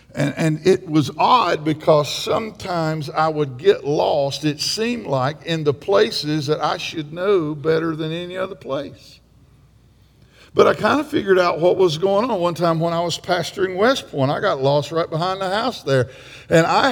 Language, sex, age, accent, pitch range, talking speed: English, male, 50-69, American, 150-200 Hz, 190 wpm